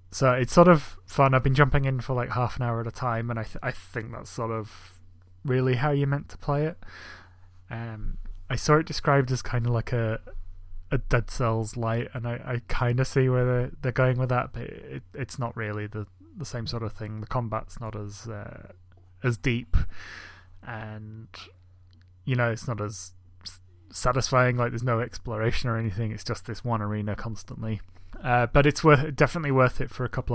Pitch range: 110-130 Hz